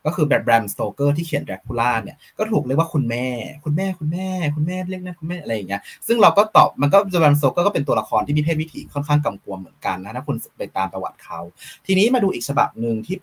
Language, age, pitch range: Thai, 20-39, 115-155 Hz